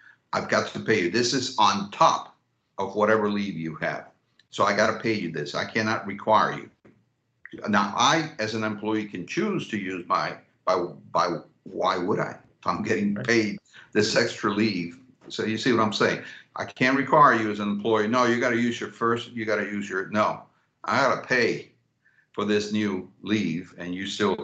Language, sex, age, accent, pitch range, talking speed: English, male, 60-79, American, 110-130 Hz, 205 wpm